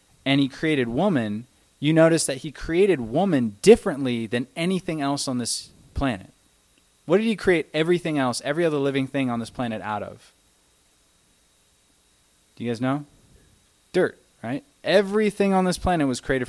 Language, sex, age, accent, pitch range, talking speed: English, male, 20-39, American, 110-150 Hz, 160 wpm